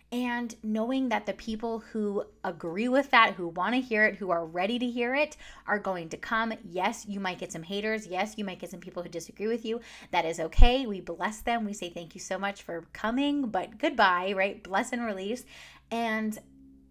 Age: 20-39